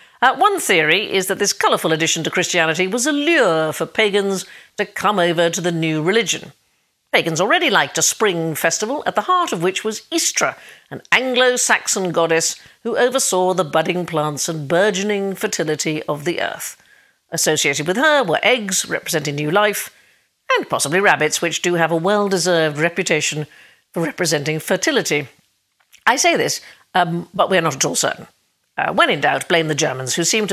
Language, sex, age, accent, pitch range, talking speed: English, female, 50-69, British, 160-215 Hz, 175 wpm